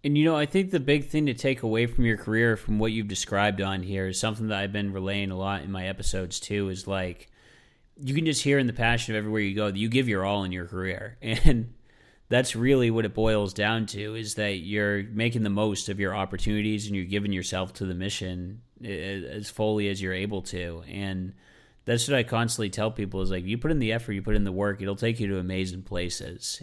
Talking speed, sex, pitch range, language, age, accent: 245 wpm, male, 95-115 Hz, English, 30-49, American